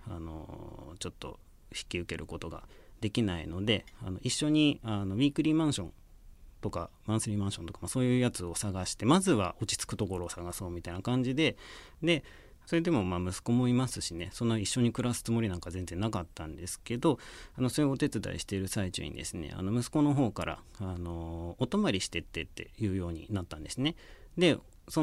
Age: 40-59